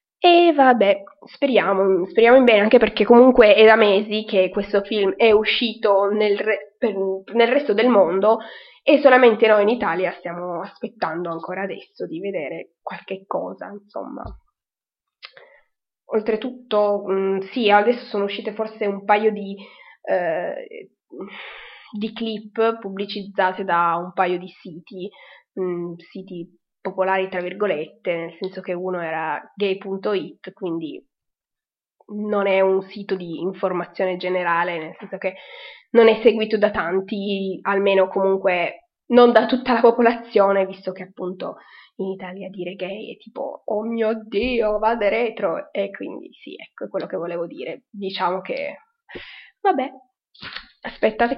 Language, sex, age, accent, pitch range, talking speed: Italian, female, 20-39, native, 190-230 Hz, 135 wpm